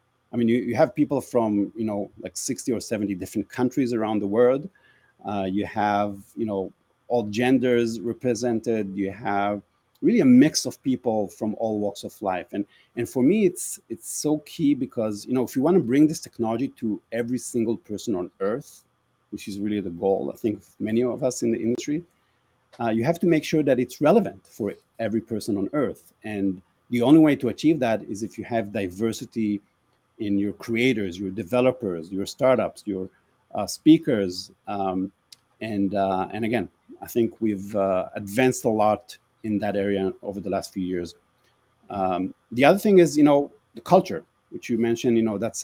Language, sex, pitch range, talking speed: English, male, 100-125 Hz, 195 wpm